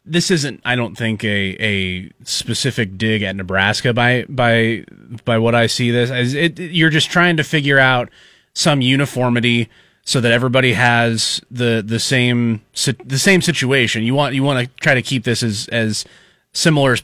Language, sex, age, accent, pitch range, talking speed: English, male, 30-49, American, 115-150 Hz, 185 wpm